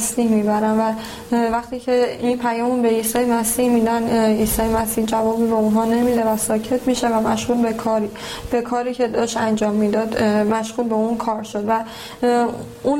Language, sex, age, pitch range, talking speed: Persian, female, 10-29, 220-245 Hz, 165 wpm